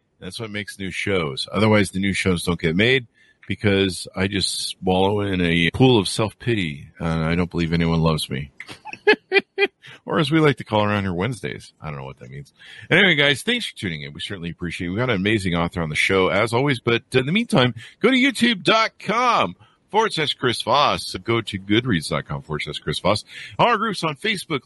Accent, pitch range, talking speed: American, 95-145 Hz, 205 wpm